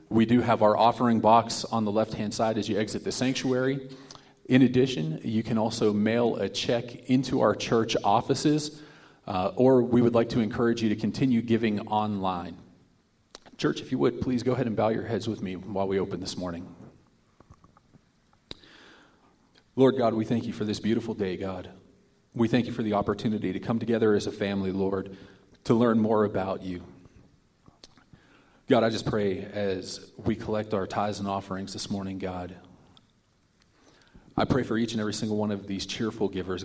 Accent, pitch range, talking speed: American, 95-115 Hz, 180 wpm